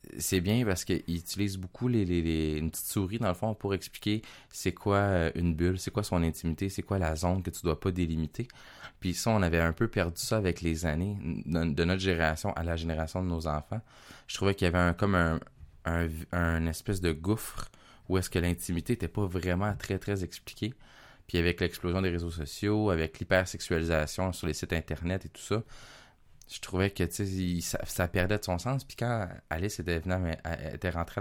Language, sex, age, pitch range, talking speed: French, male, 20-39, 85-100 Hz, 200 wpm